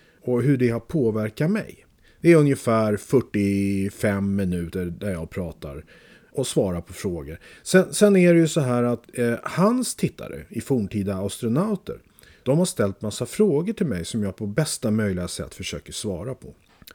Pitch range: 105-155 Hz